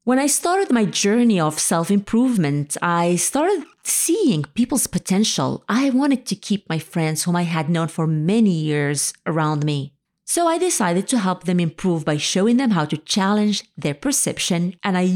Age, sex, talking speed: 30-49, female, 175 wpm